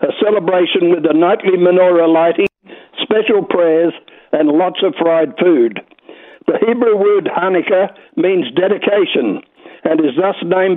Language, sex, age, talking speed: English, male, 60-79, 135 wpm